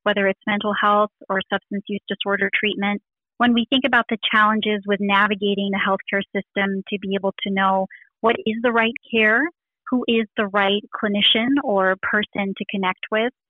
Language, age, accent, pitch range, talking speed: English, 30-49, American, 195-235 Hz, 180 wpm